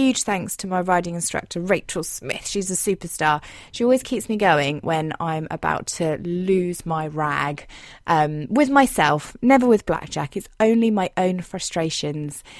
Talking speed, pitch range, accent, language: 160 wpm, 175-250 Hz, British, English